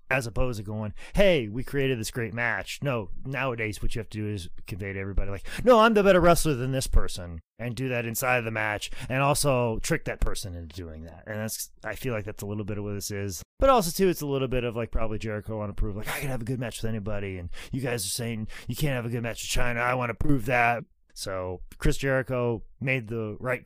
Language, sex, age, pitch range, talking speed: English, male, 30-49, 100-130 Hz, 265 wpm